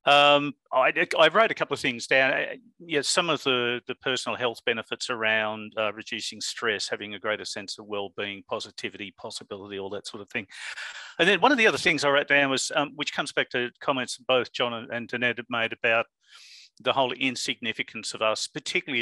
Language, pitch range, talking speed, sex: English, 110-130 Hz, 200 wpm, male